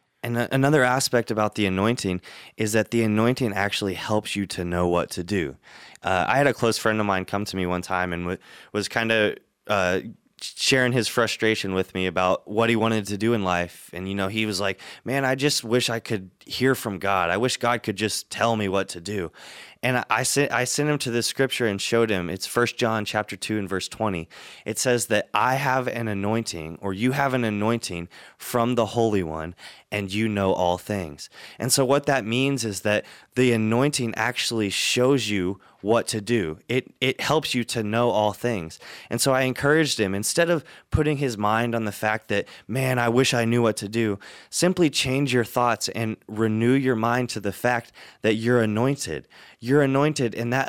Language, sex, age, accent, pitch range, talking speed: English, male, 20-39, American, 105-130 Hz, 210 wpm